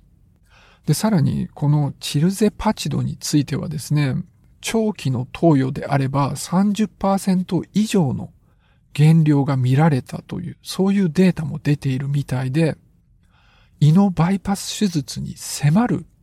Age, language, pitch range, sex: 50-69, Japanese, 135-175 Hz, male